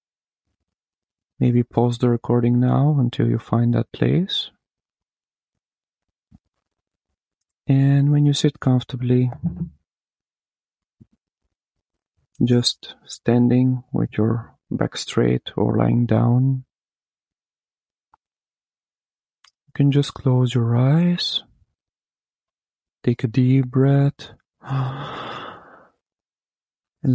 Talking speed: 75 wpm